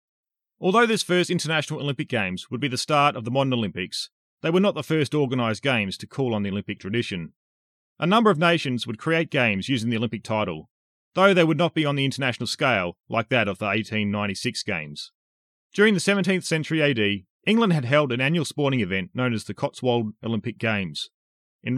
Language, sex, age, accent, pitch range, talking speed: English, male, 30-49, Australian, 105-150 Hz, 200 wpm